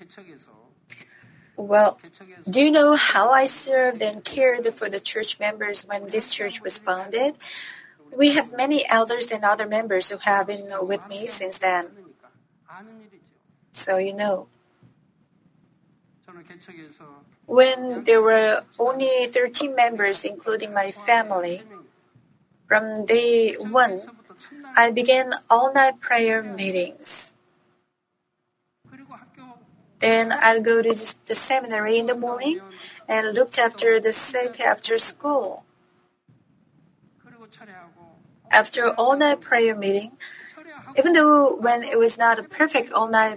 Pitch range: 205-255 Hz